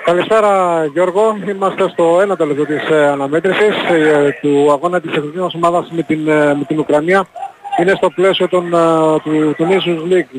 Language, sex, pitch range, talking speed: Greek, male, 155-195 Hz, 150 wpm